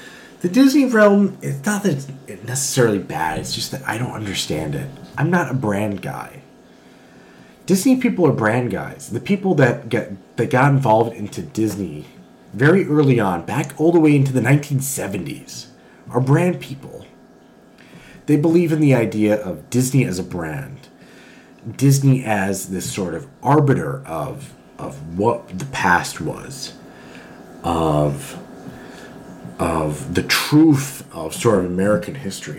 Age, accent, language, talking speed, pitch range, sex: 30-49, American, English, 145 wpm, 120-175 Hz, male